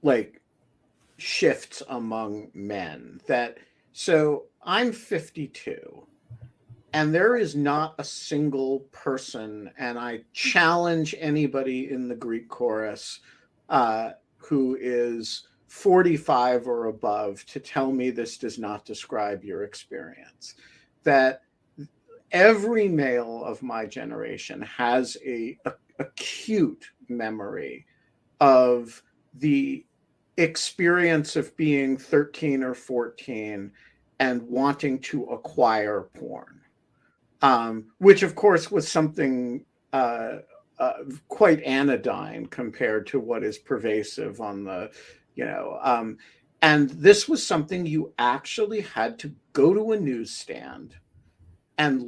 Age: 50-69